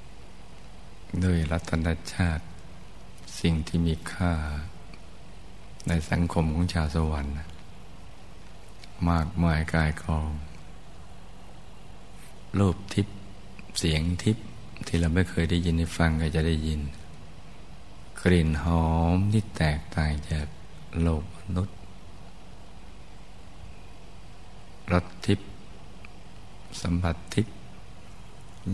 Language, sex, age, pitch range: Thai, male, 60-79, 80-90 Hz